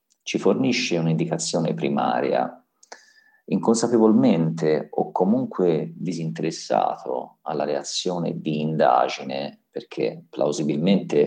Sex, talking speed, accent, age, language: male, 75 wpm, native, 50-69, Italian